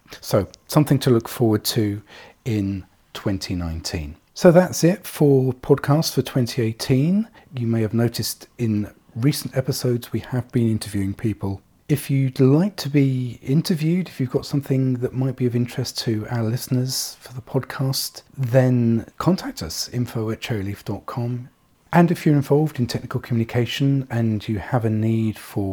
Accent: British